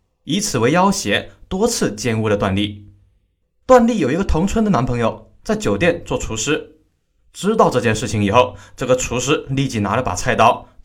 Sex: male